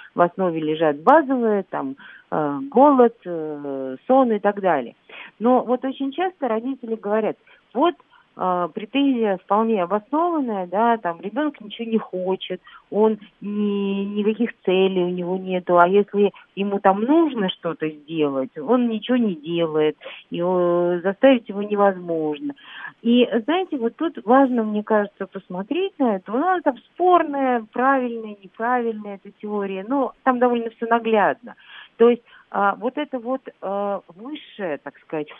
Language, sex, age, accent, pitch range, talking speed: Russian, female, 40-59, native, 175-250 Hz, 140 wpm